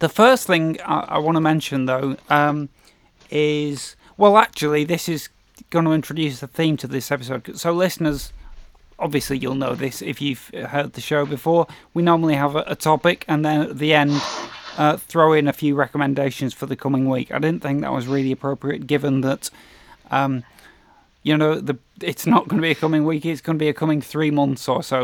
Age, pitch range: 30-49, 135-155 Hz